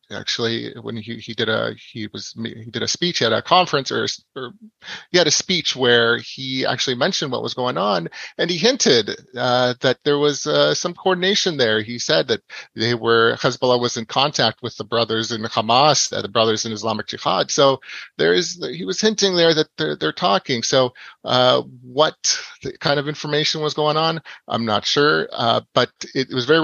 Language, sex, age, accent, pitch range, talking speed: English, male, 30-49, American, 115-145 Hz, 200 wpm